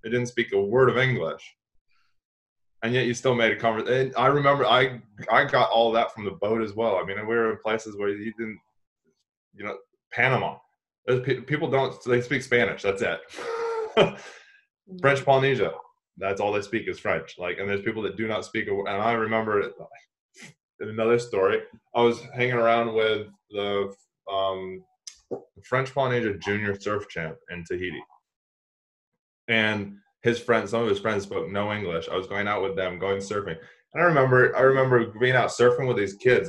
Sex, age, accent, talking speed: male, 20-39, American, 190 wpm